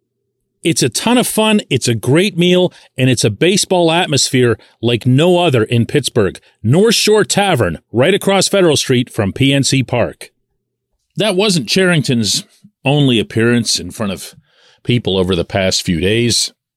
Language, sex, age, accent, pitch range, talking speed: English, male, 40-59, American, 100-155 Hz, 155 wpm